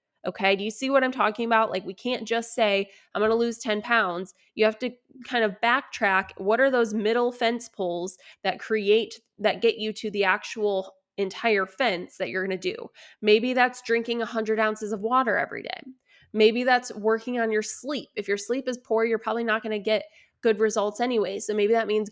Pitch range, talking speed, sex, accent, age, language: 205-245 Hz, 215 wpm, female, American, 20-39, English